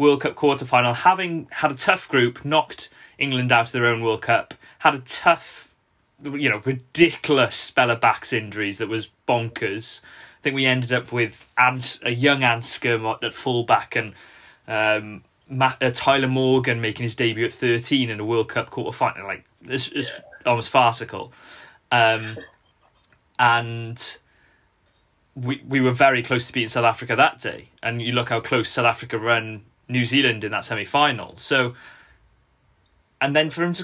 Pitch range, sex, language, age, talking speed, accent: 115-145 Hz, male, English, 20-39, 160 wpm, British